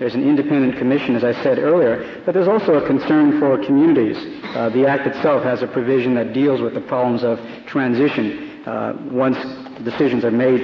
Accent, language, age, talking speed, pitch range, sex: American, English, 60-79, 190 wpm, 125-145 Hz, male